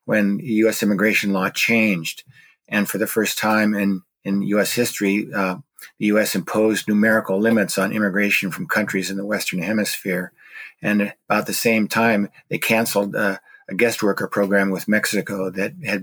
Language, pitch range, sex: English, 100-110 Hz, male